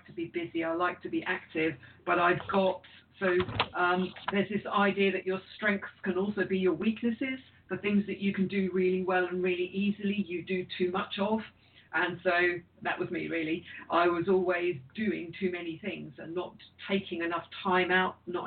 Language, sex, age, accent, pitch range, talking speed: English, female, 50-69, British, 170-195 Hz, 195 wpm